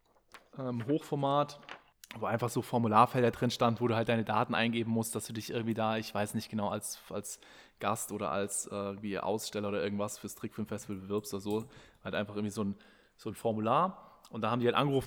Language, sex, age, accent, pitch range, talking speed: German, male, 20-39, German, 110-130 Hz, 210 wpm